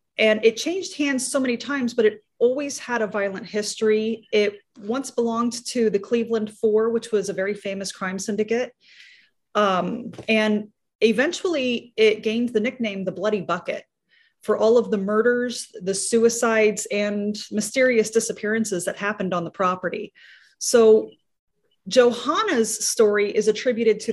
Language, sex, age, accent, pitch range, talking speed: English, female, 30-49, American, 200-240 Hz, 145 wpm